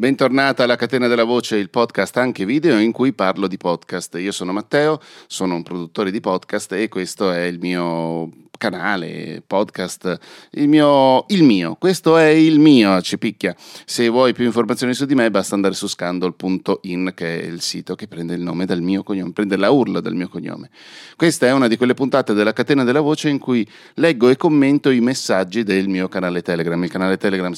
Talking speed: 195 wpm